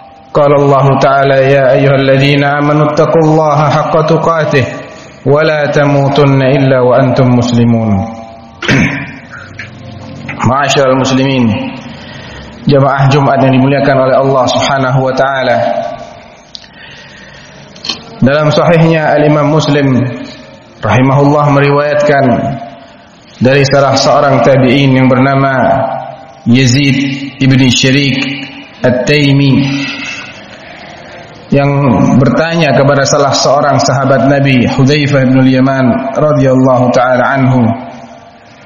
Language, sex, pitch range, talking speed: Indonesian, male, 130-145 Hz, 85 wpm